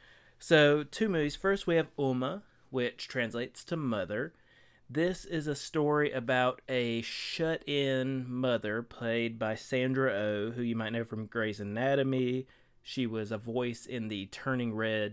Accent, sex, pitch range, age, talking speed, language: American, male, 115-135 Hz, 30-49, 150 wpm, English